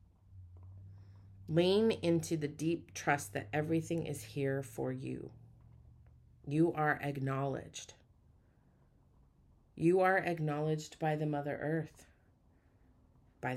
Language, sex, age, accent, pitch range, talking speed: English, female, 30-49, American, 105-155 Hz, 95 wpm